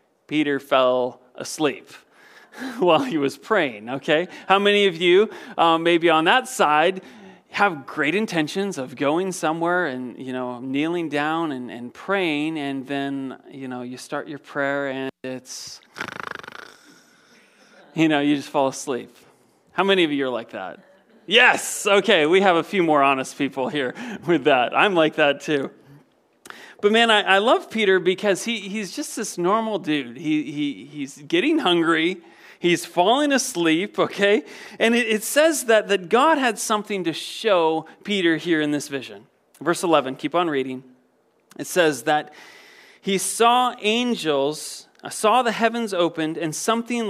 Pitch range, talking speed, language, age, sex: 145-210 Hz, 160 wpm, English, 30-49, male